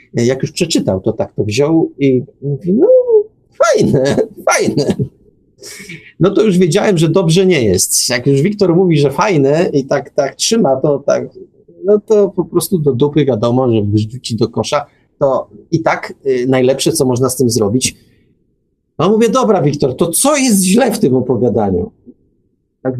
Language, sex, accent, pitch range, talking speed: Polish, male, native, 130-195 Hz, 165 wpm